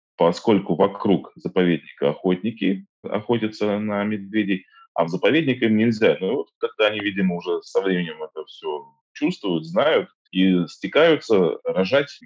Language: Russian